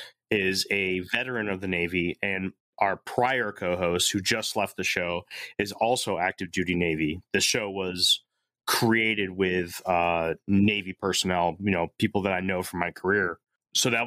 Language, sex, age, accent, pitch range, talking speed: English, male, 30-49, American, 95-120 Hz, 165 wpm